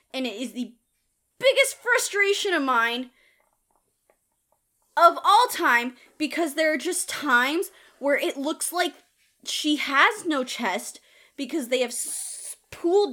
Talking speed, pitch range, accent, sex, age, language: 130 wpm, 270-385 Hz, American, female, 20-39, English